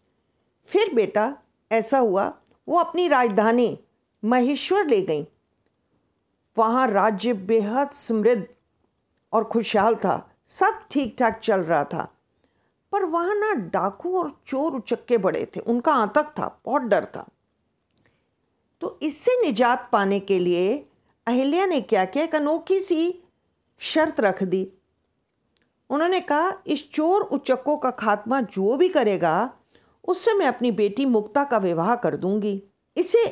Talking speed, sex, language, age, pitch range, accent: 130 wpm, female, Hindi, 50-69, 215-305 Hz, native